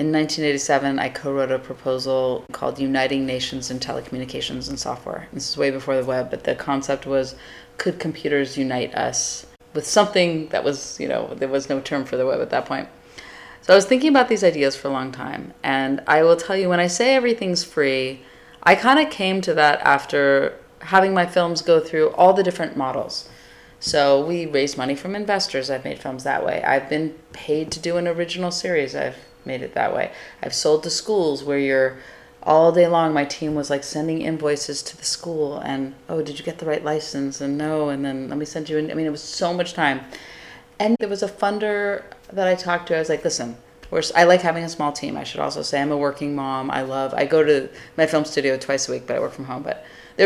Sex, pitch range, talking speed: female, 135-170 Hz, 230 wpm